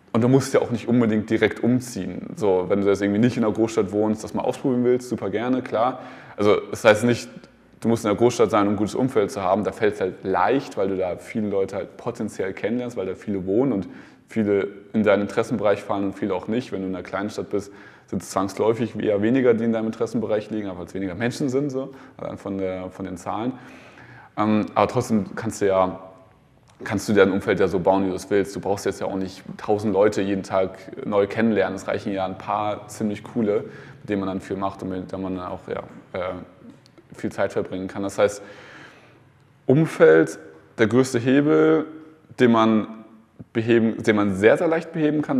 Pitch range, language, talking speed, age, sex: 95-120 Hz, German, 215 wpm, 20-39, male